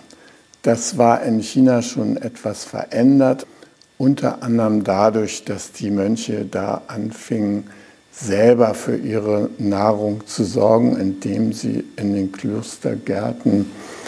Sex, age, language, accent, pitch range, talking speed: male, 60-79, German, German, 105-120 Hz, 110 wpm